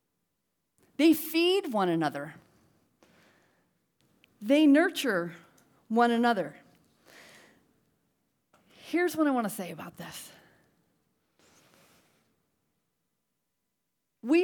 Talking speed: 70 wpm